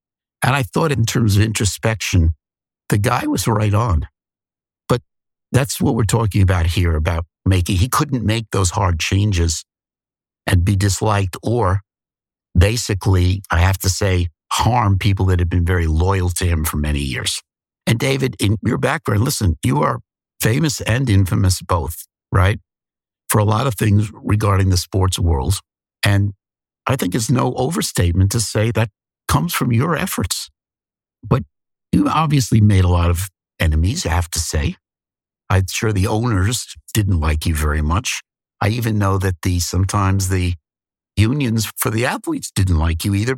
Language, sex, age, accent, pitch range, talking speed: English, male, 60-79, American, 90-115 Hz, 165 wpm